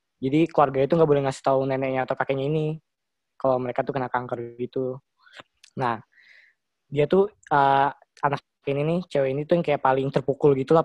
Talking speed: 175 wpm